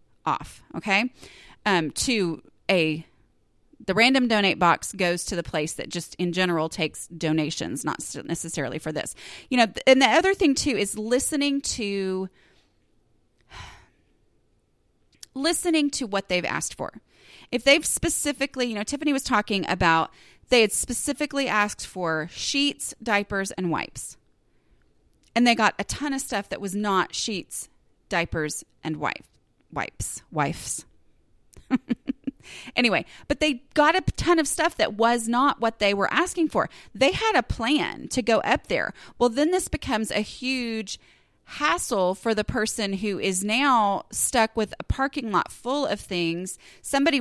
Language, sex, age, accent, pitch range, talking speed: English, female, 30-49, American, 185-270 Hz, 150 wpm